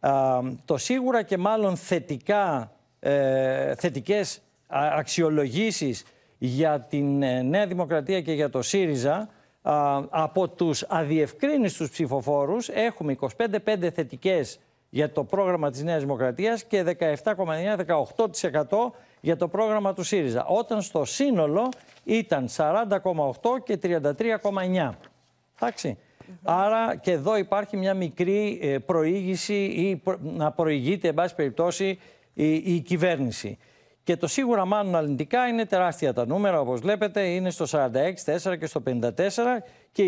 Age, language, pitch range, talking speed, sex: 60-79, Greek, 150-205 Hz, 120 wpm, male